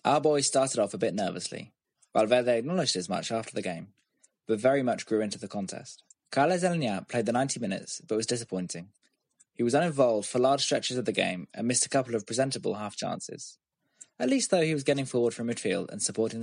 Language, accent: English, British